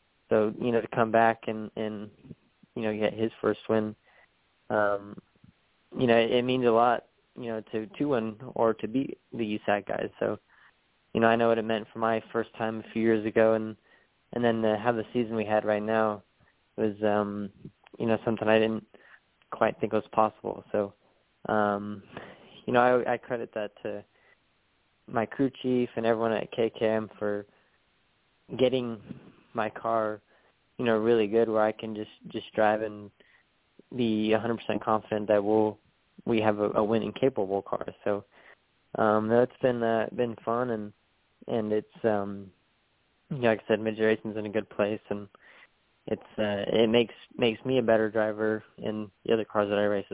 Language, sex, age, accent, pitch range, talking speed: English, male, 20-39, American, 105-115 Hz, 185 wpm